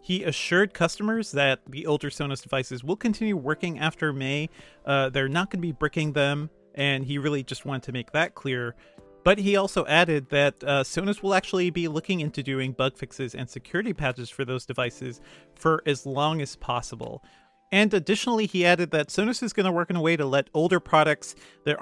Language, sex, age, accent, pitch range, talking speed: English, male, 40-59, American, 135-180 Hz, 205 wpm